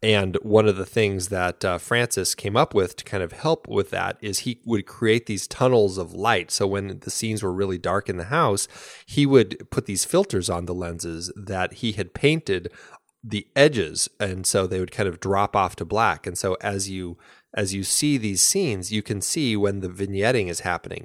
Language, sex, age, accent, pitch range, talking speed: English, male, 20-39, American, 95-120 Hz, 215 wpm